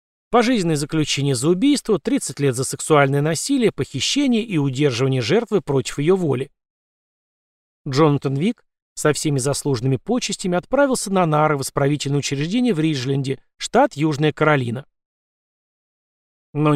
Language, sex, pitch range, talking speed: Russian, male, 140-190 Hz, 120 wpm